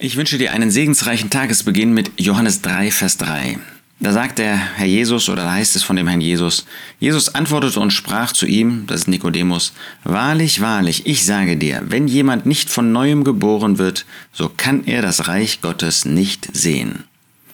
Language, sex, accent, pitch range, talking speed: German, male, German, 95-130 Hz, 180 wpm